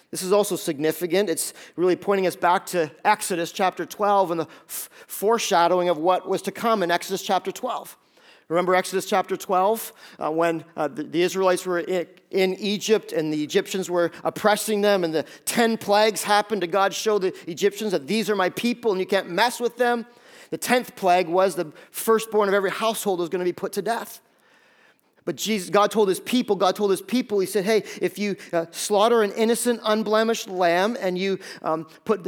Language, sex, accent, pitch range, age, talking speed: English, male, American, 175-210 Hz, 40-59, 195 wpm